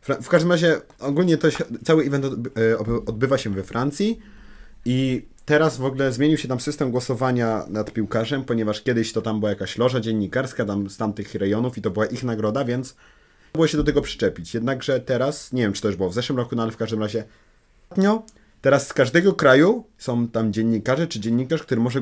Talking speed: 200 wpm